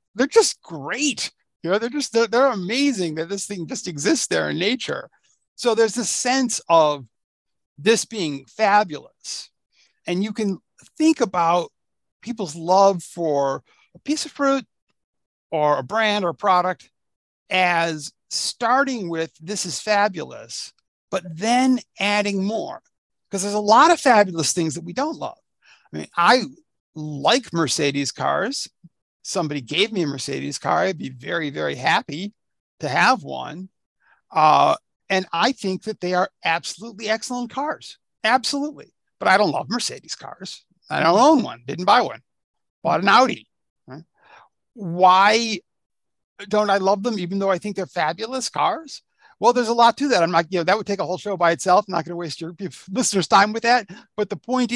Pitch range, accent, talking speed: 170-235 Hz, American, 170 wpm